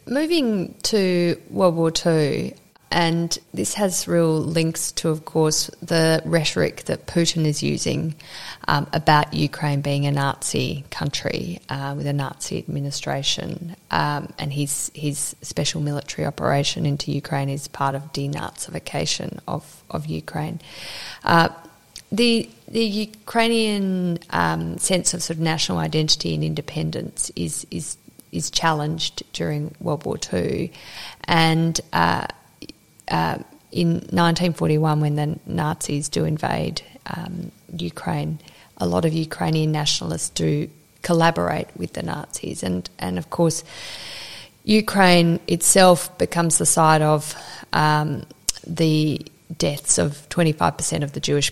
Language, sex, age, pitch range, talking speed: English, female, 30-49, 145-170 Hz, 125 wpm